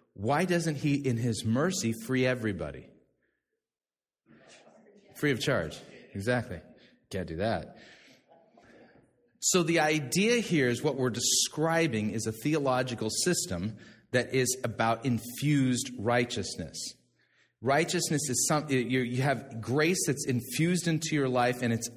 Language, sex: English, male